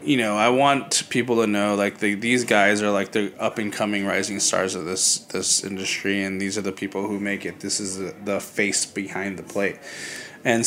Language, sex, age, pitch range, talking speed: English, male, 20-39, 105-130 Hz, 225 wpm